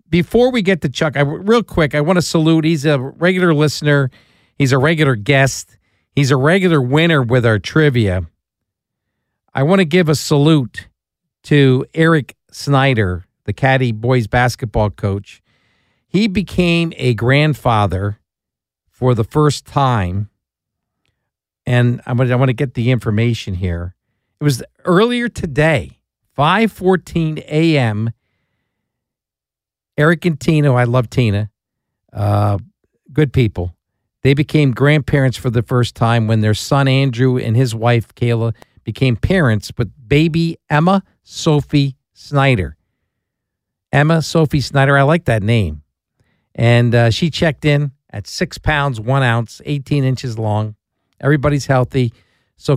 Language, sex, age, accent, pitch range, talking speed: English, male, 50-69, American, 115-150 Hz, 135 wpm